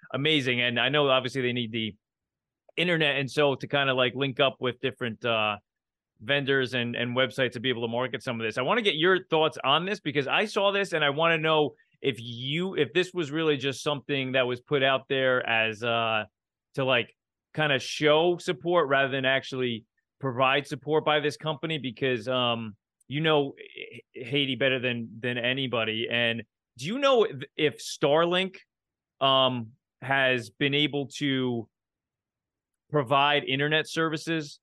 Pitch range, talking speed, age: 125-155 Hz, 175 wpm, 30-49